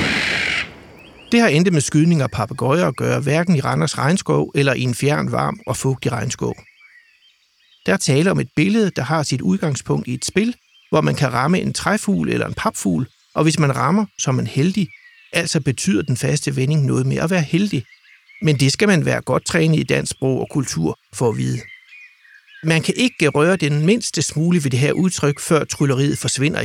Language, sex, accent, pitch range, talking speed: English, male, Danish, 130-175 Hz, 205 wpm